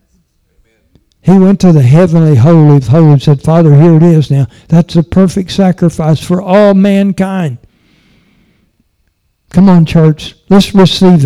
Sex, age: male, 60-79